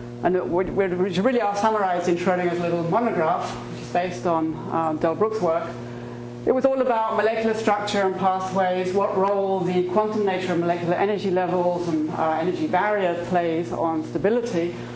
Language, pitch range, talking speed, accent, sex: English, 165-205 Hz, 165 wpm, British, female